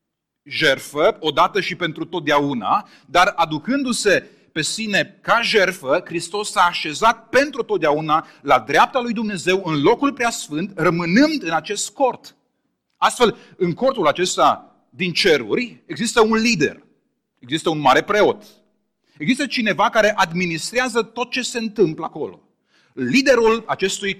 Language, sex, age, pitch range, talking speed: Romanian, male, 30-49, 155-225 Hz, 125 wpm